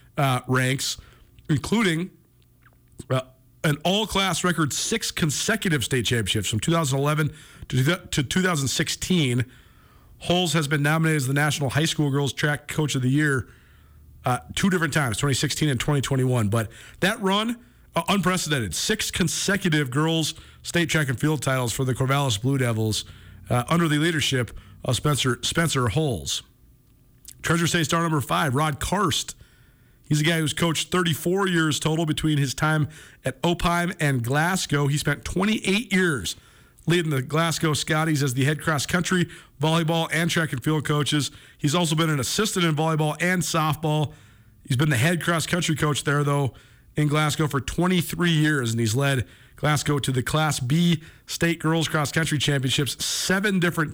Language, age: English, 40-59